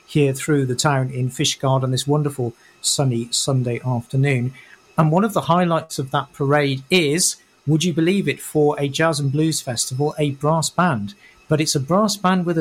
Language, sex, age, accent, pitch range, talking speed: English, male, 50-69, British, 130-160 Hz, 190 wpm